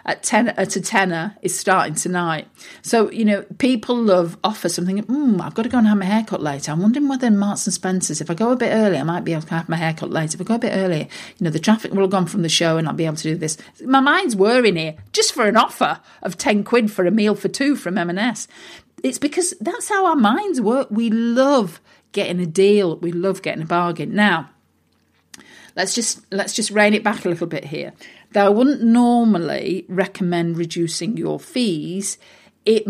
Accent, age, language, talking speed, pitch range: British, 40-59, English, 230 wpm, 170-225 Hz